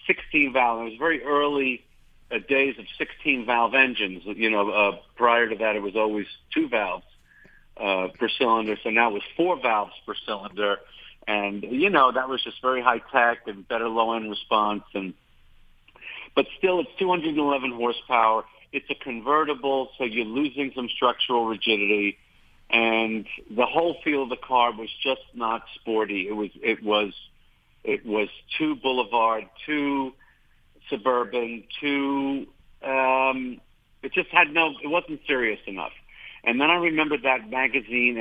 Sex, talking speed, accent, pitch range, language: male, 150 wpm, American, 110-135 Hz, English